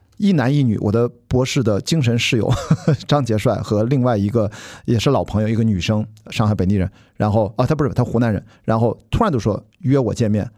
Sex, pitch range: male, 110-150 Hz